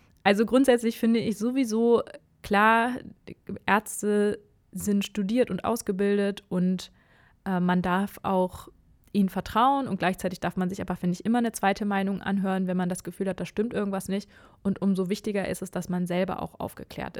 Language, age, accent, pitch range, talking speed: German, 20-39, German, 185-215 Hz, 175 wpm